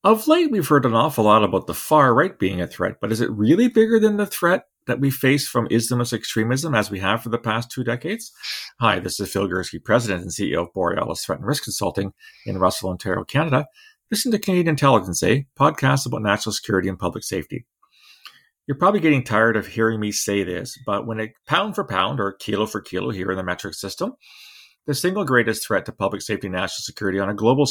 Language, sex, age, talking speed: English, male, 40-59, 225 wpm